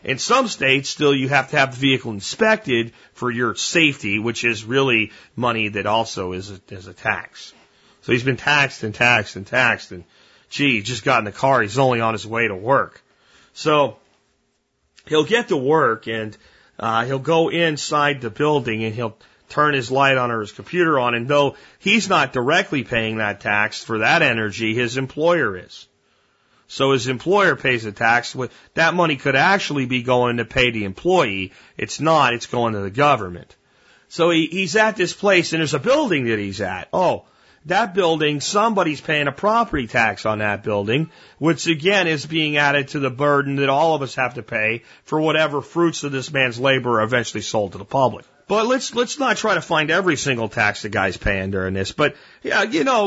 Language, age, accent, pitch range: English, 40-59, American, 115-160 Hz